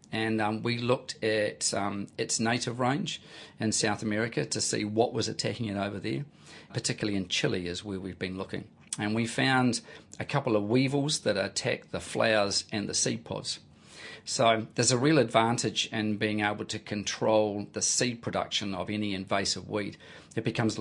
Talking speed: 180 wpm